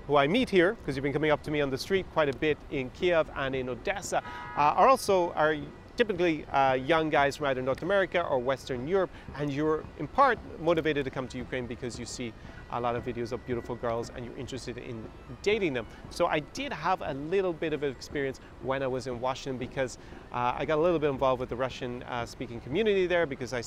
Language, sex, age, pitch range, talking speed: English, male, 30-49, 125-155 Hz, 235 wpm